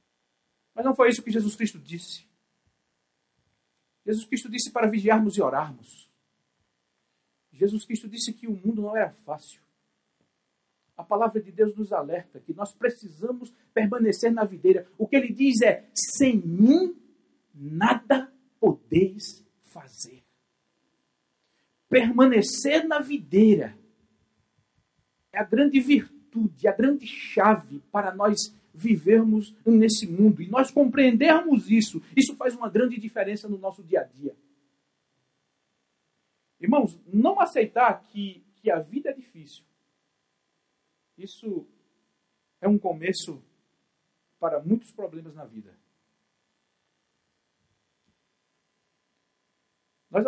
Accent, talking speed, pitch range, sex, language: Brazilian, 110 wpm, 160-235 Hz, male, Portuguese